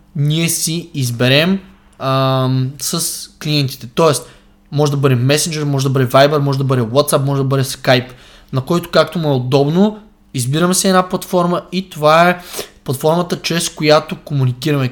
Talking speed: 160 wpm